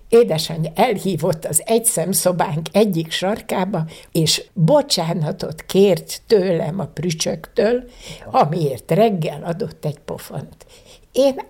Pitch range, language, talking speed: 165-215 Hz, Hungarian, 95 wpm